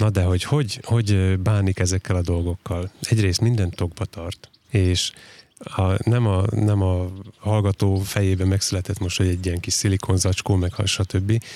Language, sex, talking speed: Hungarian, male, 155 wpm